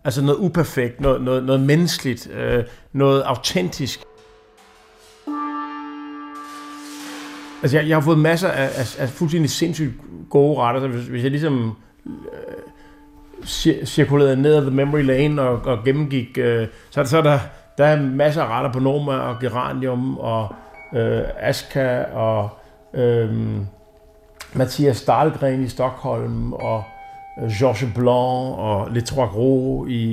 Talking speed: 140 wpm